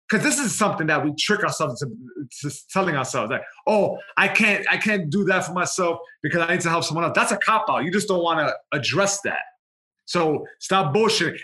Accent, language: American, English